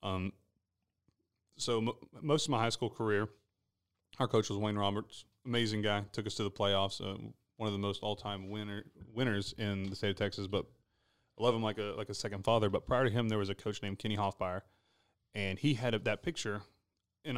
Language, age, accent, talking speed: English, 30-49, American, 215 wpm